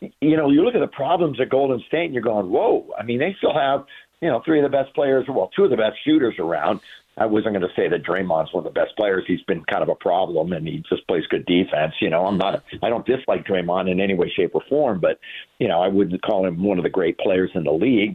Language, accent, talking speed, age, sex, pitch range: English, American, 280 wpm, 50-69, male, 125-160 Hz